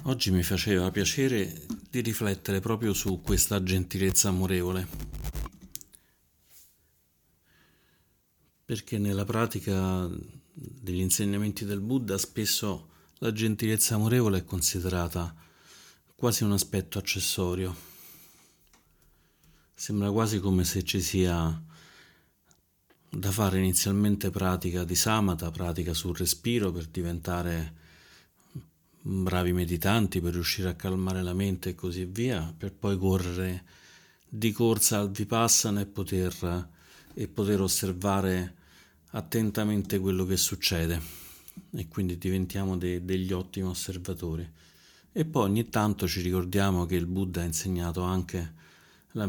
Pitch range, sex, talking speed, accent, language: 90-100 Hz, male, 110 wpm, native, Italian